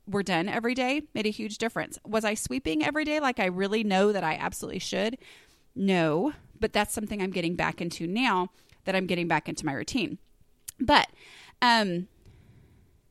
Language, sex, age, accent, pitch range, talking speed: English, female, 30-49, American, 180-250 Hz, 180 wpm